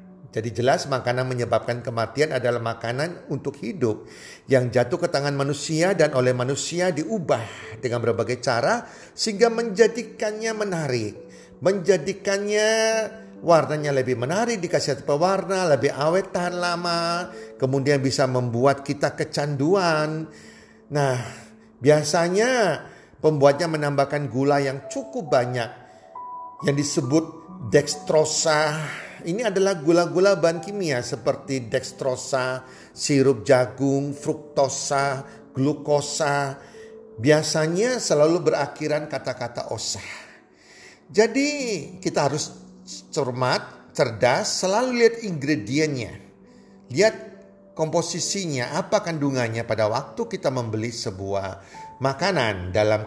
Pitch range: 130-180 Hz